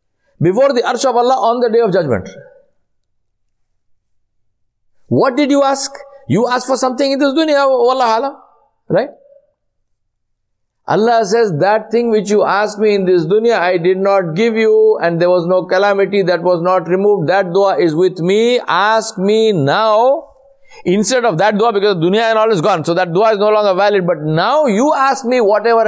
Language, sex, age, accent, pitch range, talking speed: English, male, 60-79, Indian, 175-240 Hz, 190 wpm